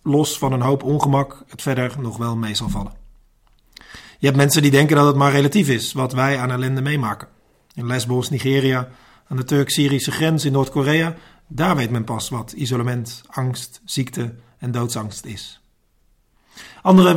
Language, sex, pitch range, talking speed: Dutch, male, 125-145 Hz, 170 wpm